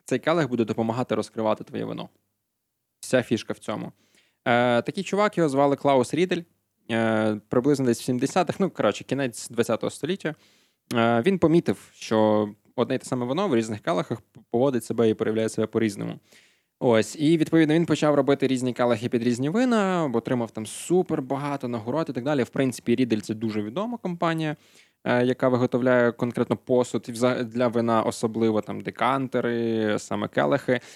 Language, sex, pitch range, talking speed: Ukrainian, male, 110-140 Hz, 155 wpm